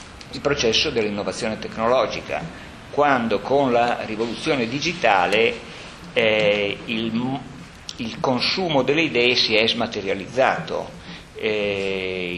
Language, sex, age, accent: Italian, male, 50-69, native